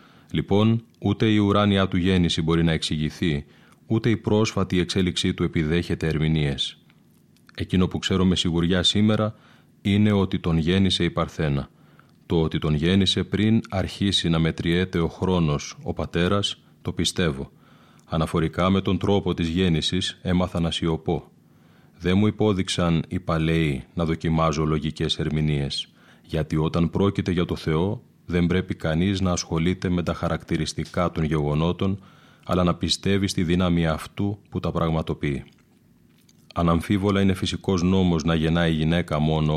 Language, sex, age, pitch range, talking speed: Greek, male, 30-49, 80-95 Hz, 140 wpm